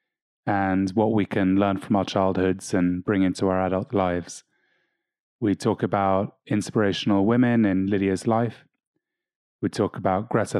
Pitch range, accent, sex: 95-115 Hz, British, male